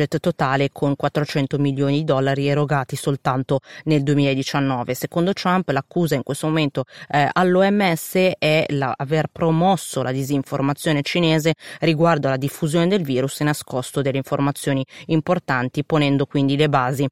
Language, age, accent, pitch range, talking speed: Italian, 30-49, native, 135-165 Hz, 135 wpm